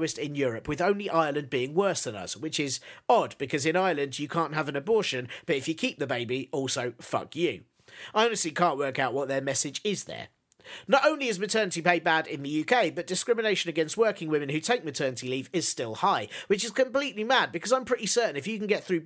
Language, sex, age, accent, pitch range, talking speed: English, male, 40-59, British, 140-210 Hz, 230 wpm